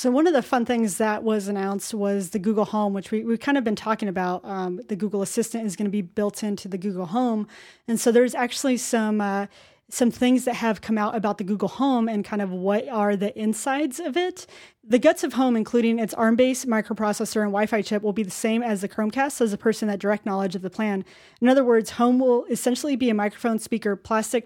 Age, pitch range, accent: 30-49, 205-240 Hz, American